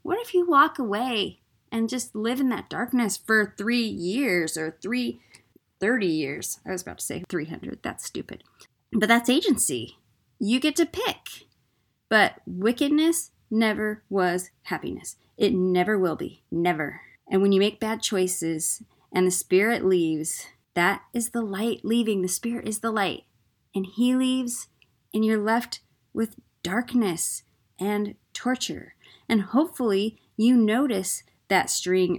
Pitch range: 185-250 Hz